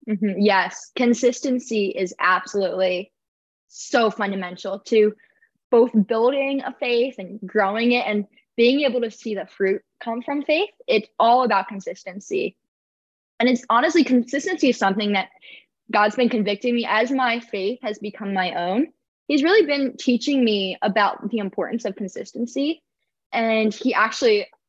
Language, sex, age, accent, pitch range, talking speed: English, female, 10-29, American, 205-250 Hz, 150 wpm